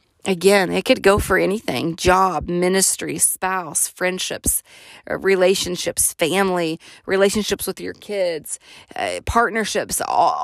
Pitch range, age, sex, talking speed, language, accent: 175-225 Hz, 30-49, female, 110 wpm, English, American